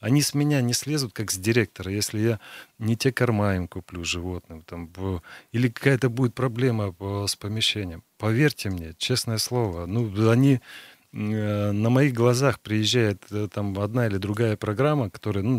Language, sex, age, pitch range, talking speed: Russian, male, 30-49, 100-125 Hz, 150 wpm